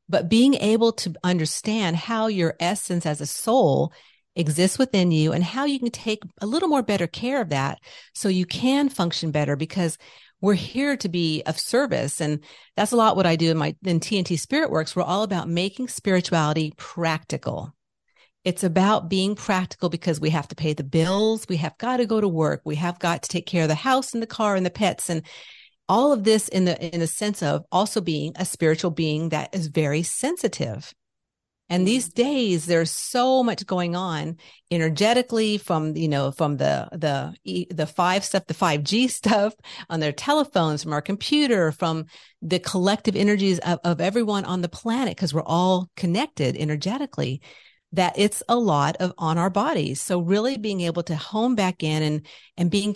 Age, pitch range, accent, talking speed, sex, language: 50-69, 160-215 Hz, American, 195 wpm, female, English